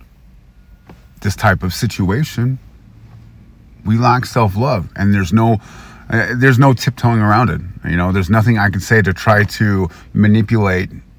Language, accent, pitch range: English, American, 80-110 Hz